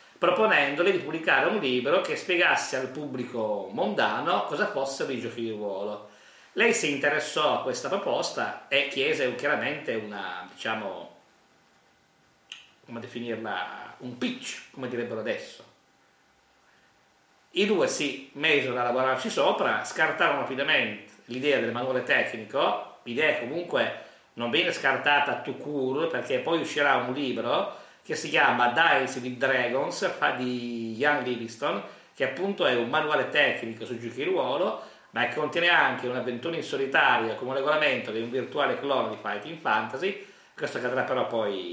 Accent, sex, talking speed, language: native, male, 145 wpm, Italian